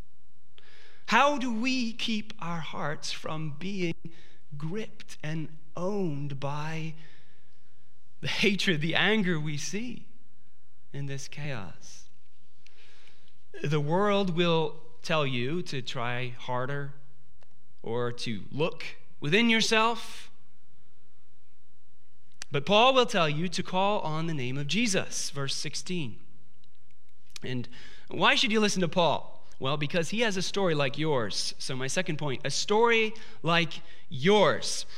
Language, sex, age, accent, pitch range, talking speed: English, male, 30-49, American, 120-200 Hz, 120 wpm